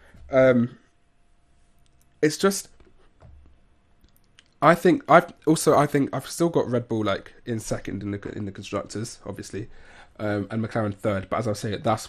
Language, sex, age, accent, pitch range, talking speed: English, male, 20-39, British, 100-115 Hz, 165 wpm